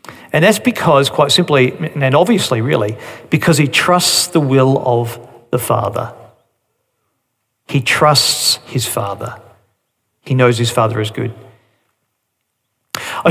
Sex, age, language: male, 50-69, English